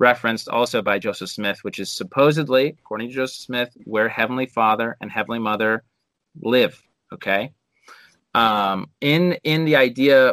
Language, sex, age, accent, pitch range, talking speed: English, male, 30-49, American, 105-130 Hz, 145 wpm